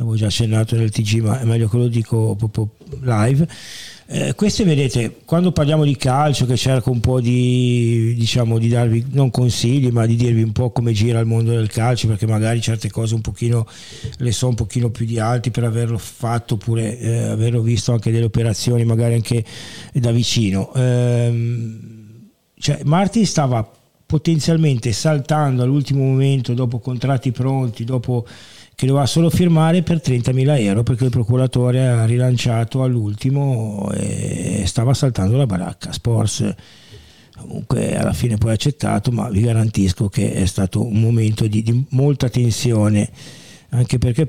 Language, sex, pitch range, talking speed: Italian, male, 110-130 Hz, 160 wpm